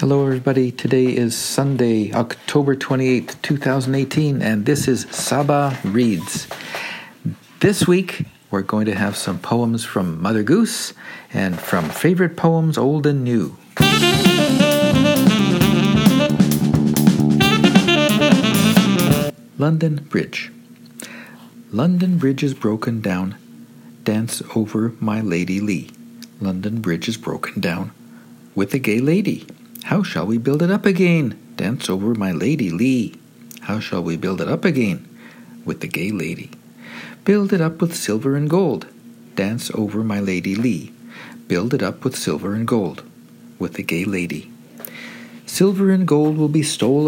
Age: 50-69